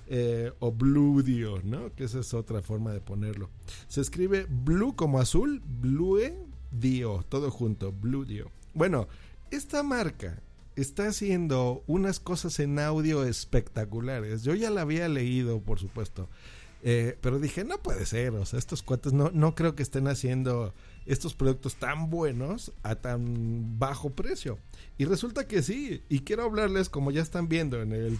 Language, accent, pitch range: Spanish, Mexican, 120-185 Hz